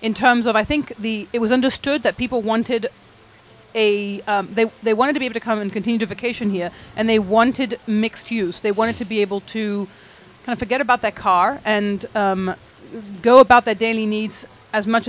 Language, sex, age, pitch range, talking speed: English, female, 30-49, 200-235 Hz, 210 wpm